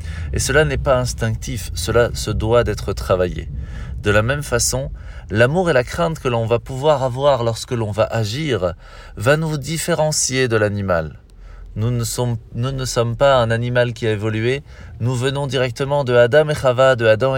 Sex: male